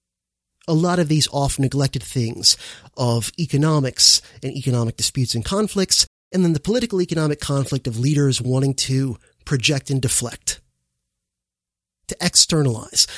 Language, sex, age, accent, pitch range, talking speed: English, male, 30-49, American, 120-155 Hz, 130 wpm